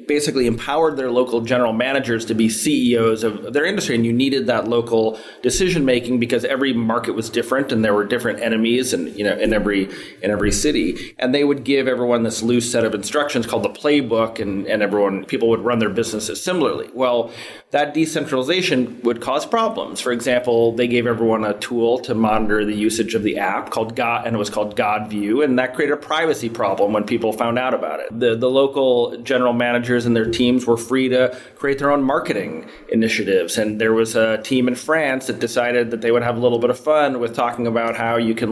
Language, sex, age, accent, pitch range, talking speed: English, male, 30-49, American, 115-130 Hz, 215 wpm